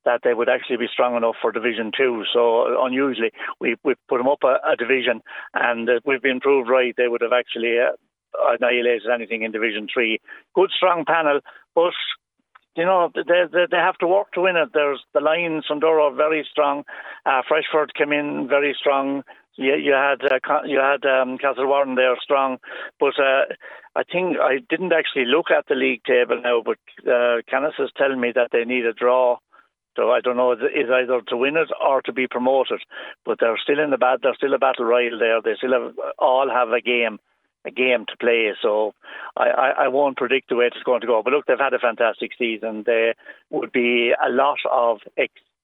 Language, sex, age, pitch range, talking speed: English, male, 60-79, 120-150 Hz, 215 wpm